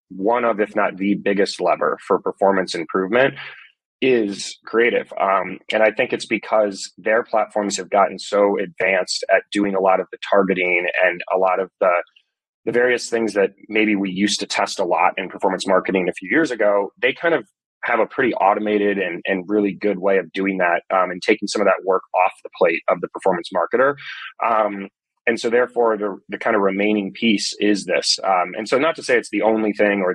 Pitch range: 95-110 Hz